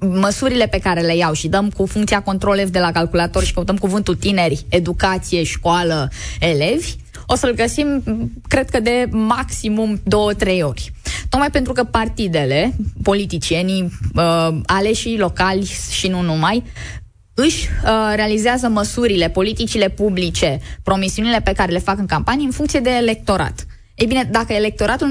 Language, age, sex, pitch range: Romanian, 20-39, female, 180-235 Hz